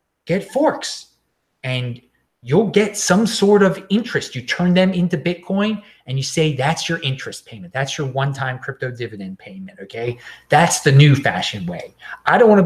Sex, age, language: male, 30-49, English